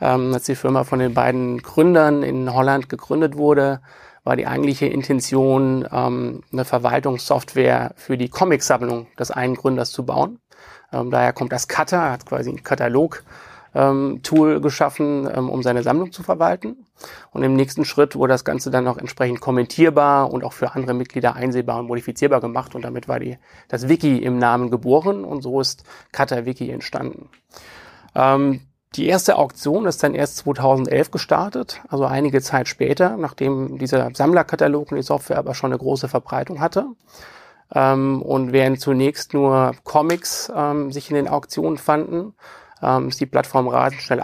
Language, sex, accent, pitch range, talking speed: German, male, German, 125-145 Hz, 165 wpm